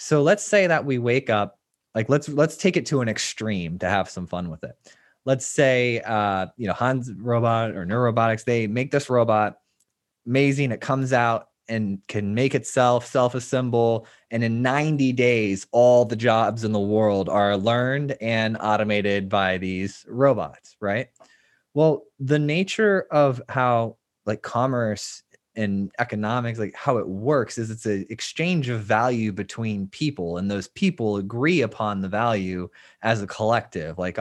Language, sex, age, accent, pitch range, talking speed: English, male, 20-39, American, 105-130 Hz, 165 wpm